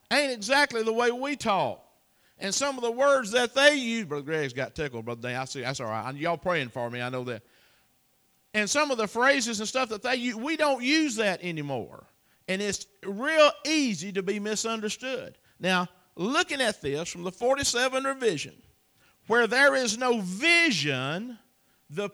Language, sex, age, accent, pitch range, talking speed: English, male, 50-69, American, 195-270 Hz, 185 wpm